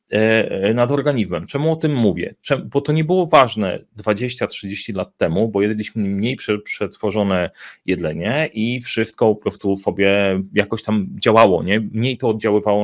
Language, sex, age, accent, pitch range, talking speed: Polish, male, 30-49, native, 100-135 Hz, 140 wpm